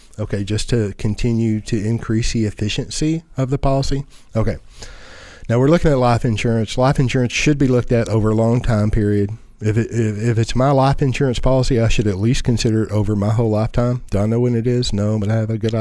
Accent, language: American, English